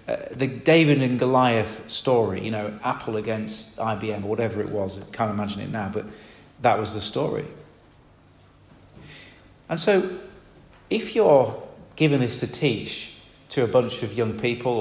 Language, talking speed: English, 155 wpm